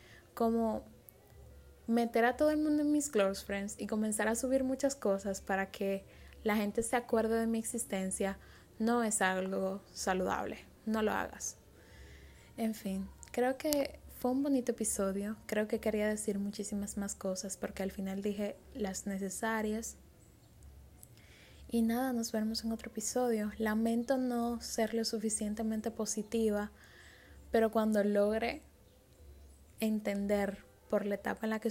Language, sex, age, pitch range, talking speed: Spanish, female, 10-29, 200-230 Hz, 145 wpm